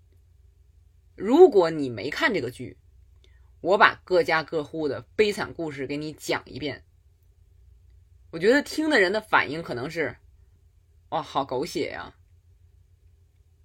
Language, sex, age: Chinese, female, 20-39